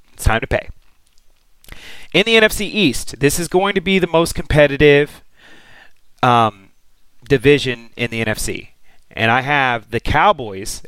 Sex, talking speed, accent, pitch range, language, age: male, 145 wpm, American, 110-145 Hz, English, 30-49